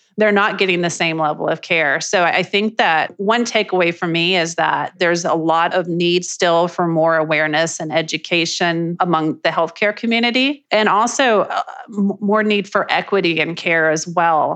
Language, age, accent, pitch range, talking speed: English, 30-49, American, 160-185 Hz, 175 wpm